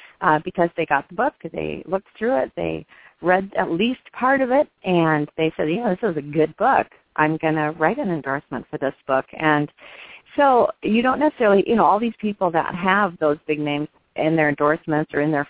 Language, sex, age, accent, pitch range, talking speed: English, female, 40-59, American, 145-185 Hz, 220 wpm